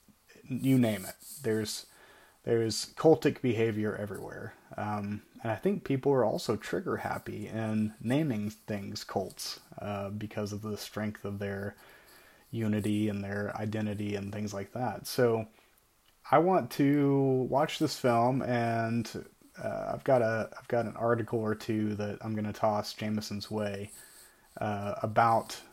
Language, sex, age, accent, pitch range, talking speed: English, male, 30-49, American, 105-120 Hz, 145 wpm